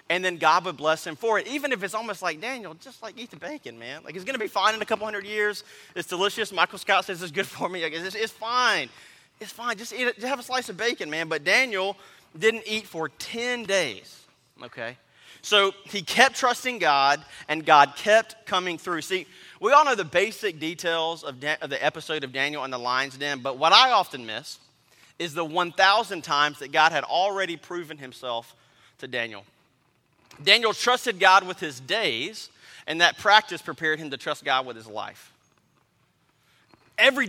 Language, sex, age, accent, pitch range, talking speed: English, male, 30-49, American, 145-210 Hz, 200 wpm